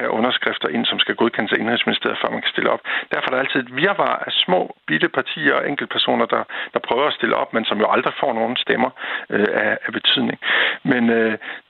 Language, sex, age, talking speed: Danish, male, 60-79, 220 wpm